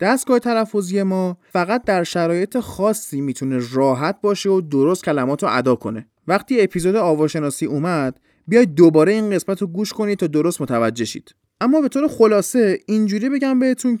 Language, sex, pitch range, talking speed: Persian, male, 145-225 Hz, 160 wpm